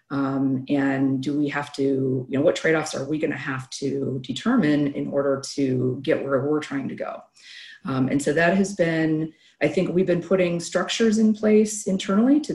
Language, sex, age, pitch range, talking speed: English, female, 40-59, 145-175 Hz, 200 wpm